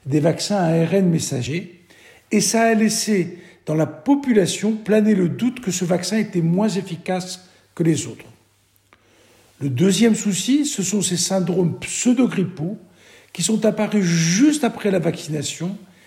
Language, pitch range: French, 165-215 Hz